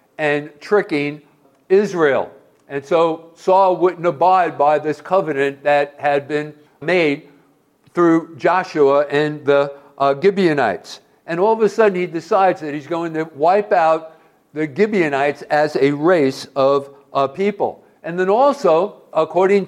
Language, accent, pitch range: English, American, 145-185 Hz